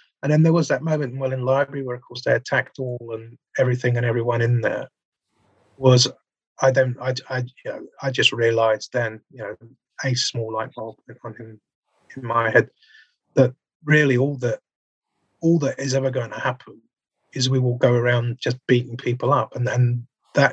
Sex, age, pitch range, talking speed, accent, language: male, 30-49, 125-165 Hz, 195 wpm, British, English